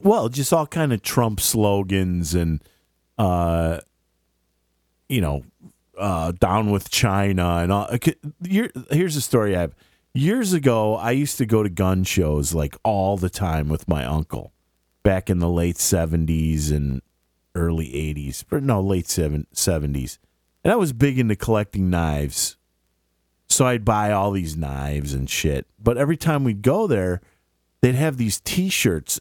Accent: American